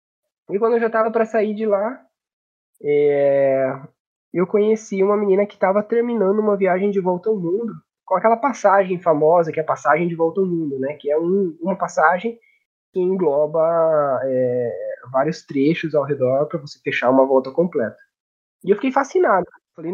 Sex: male